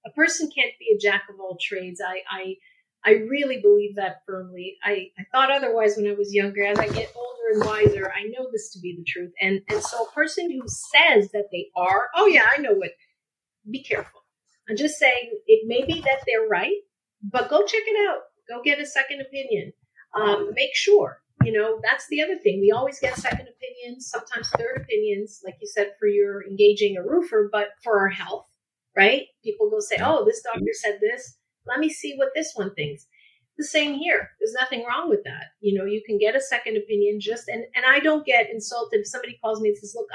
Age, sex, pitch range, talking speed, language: 40-59, female, 205-295 Hz, 225 wpm, English